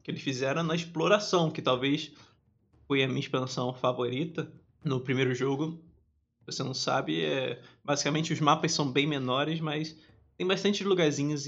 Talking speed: 155 wpm